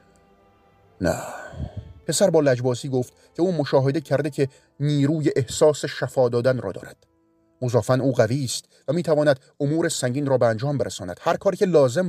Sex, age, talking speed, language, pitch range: male, 40-59, 165 wpm, Persian, 100-145 Hz